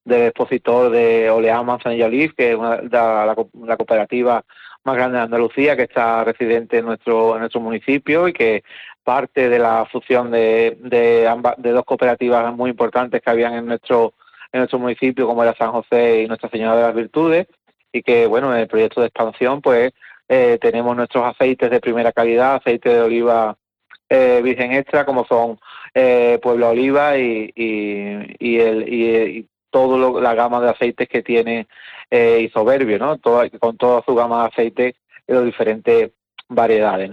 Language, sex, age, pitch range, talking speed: Spanish, male, 30-49, 115-125 Hz, 180 wpm